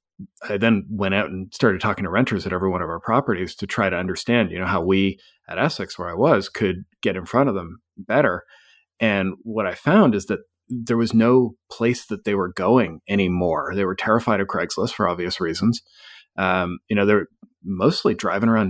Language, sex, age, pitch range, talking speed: English, male, 40-59, 95-115 Hz, 210 wpm